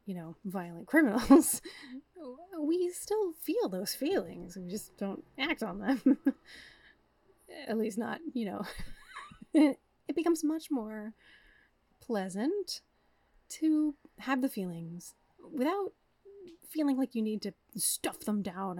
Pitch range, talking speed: 200-285 Hz, 120 wpm